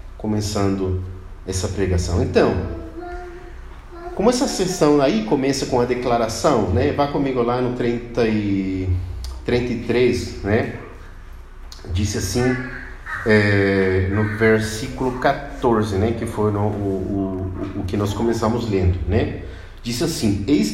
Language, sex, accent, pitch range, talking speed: Portuguese, male, Brazilian, 95-140 Hz, 120 wpm